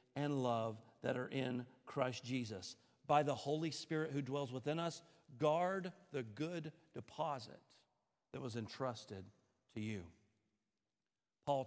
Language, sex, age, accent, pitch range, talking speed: English, male, 50-69, American, 135-230 Hz, 130 wpm